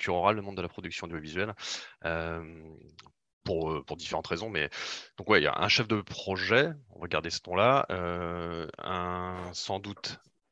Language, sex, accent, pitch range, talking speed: French, male, French, 80-100 Hz, 170 wpm